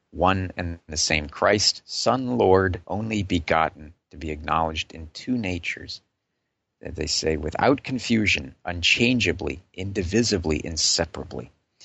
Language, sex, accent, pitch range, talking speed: English, male, American, 80-110 Hz, 110 wpm